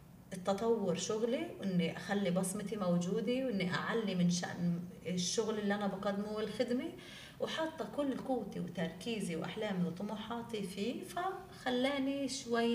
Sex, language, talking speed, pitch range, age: female, Arabic, 115 wpm, 170-220 Hz, 30-49